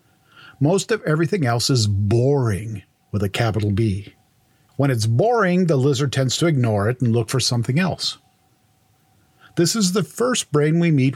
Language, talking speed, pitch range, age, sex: English, 165 wpm, 115-150 Hz, 50-69, male